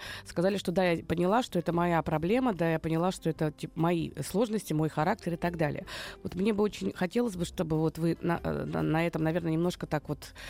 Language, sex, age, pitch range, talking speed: Russian, female, 20-39, 160-205 Hz, 215 wpm